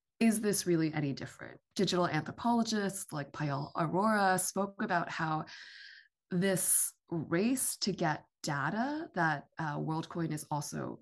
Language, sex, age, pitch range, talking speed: English, female, 20-39, 155-190 Hz, 125 wpm